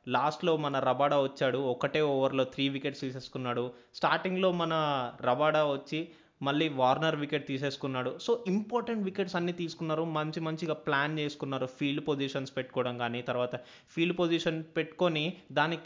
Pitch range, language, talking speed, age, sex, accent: 135-180 Hz, Telugu, 130 wpm, 20-39, male, native